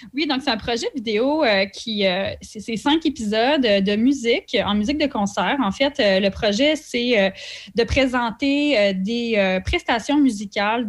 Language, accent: French, Canadian